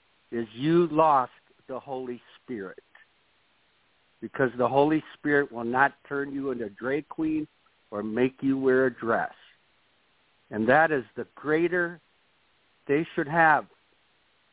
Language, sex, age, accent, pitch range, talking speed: English, male, 60-79, American, 120-150 Hz, 130 wpm